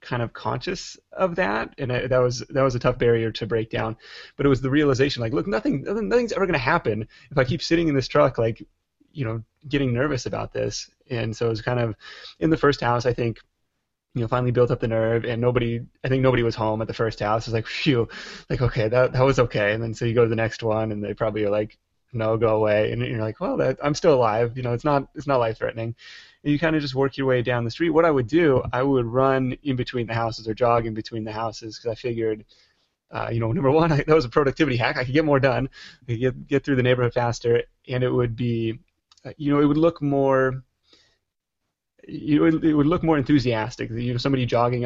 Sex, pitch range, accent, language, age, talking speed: male, 115-135 Hz, American, English, 20-39, 255 wpm